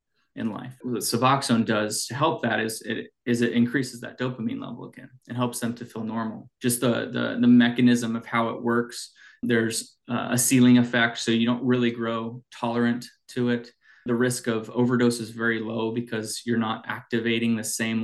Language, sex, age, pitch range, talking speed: English, male, 20-39, 115-125 Hz, 190 wpm